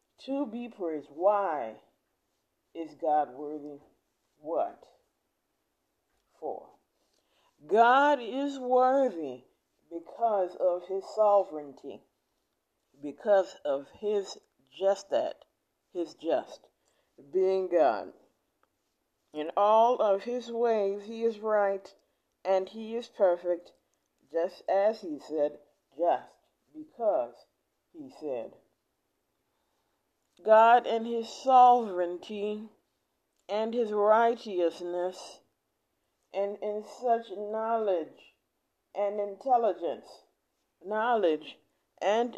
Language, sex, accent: English, female, American